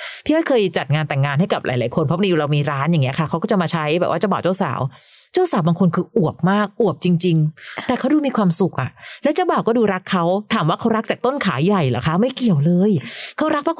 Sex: female